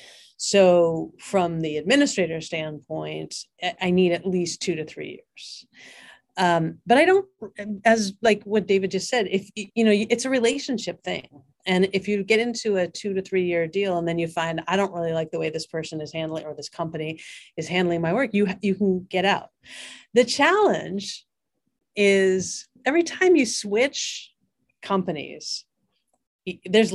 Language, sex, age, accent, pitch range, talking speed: English, female, 40-59, American, 170-215 Hz, 170 wpm